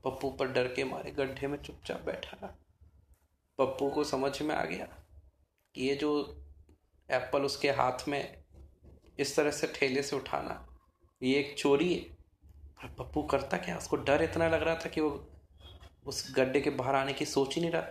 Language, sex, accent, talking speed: Hindi, male, native, 180 wpm